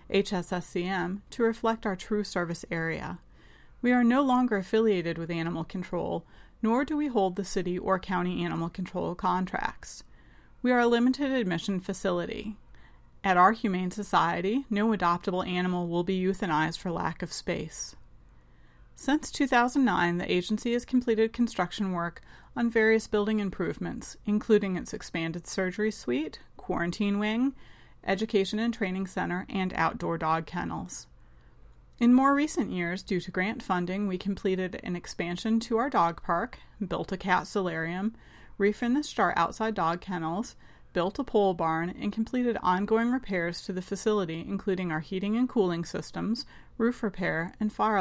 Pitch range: 175-225 Hz